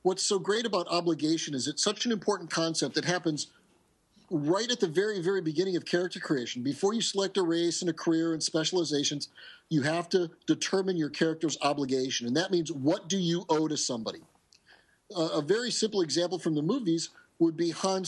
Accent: American